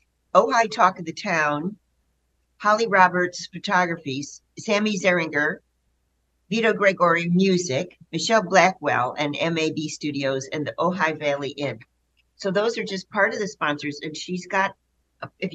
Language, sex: English, female